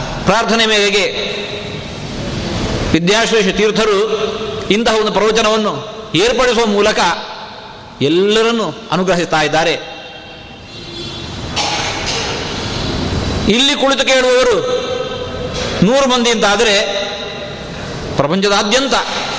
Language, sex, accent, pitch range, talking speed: Kannada, male, native, 150-215 Hz, 60 wpm